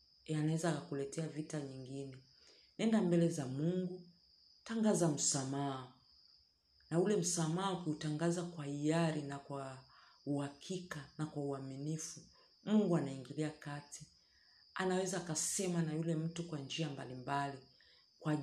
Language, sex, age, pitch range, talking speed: Swahili, female, 40-59, 140-170 Hz, 115 wpm